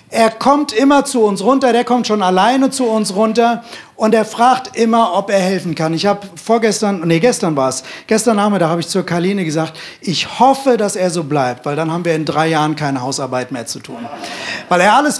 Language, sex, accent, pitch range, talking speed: German, male, German, 165-220 Hz, 220 wpm